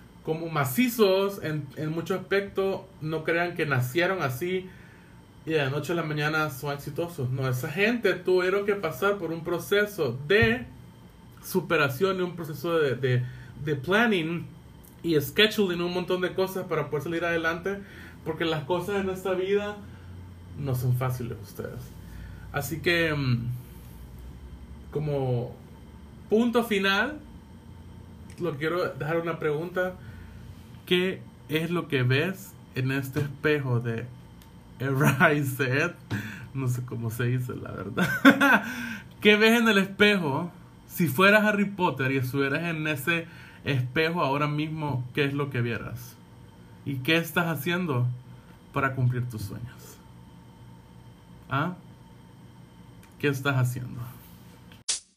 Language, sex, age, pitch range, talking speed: Spanish, male, 30-49, 120-175 Hz, 130 wpm